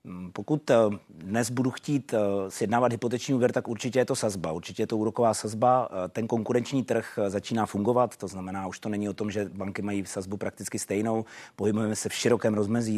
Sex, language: male, Czech